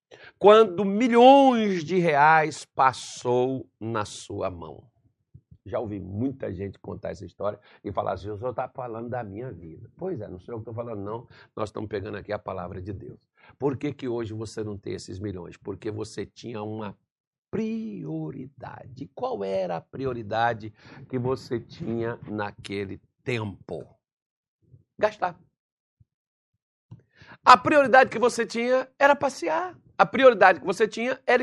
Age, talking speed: 60-79, 150 wpm